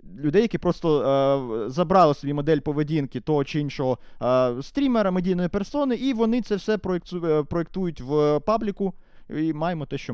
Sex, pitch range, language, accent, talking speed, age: male, 125-165 Hz, Ukrainian, native, 155 wpm, 20-39